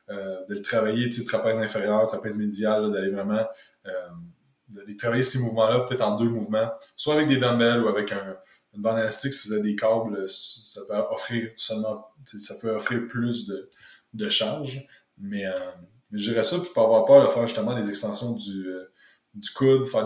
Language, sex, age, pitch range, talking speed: French, male, 20-39, 105-125 Hz, 200 wpm